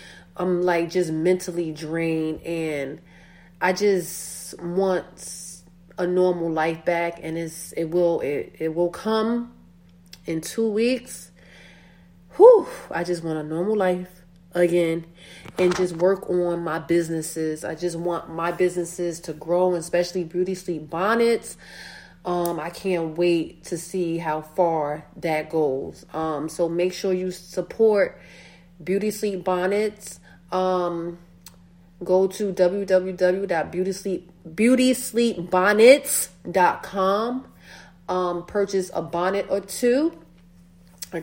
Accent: American